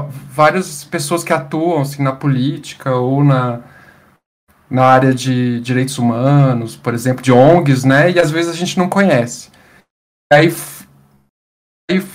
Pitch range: 130-170 Hz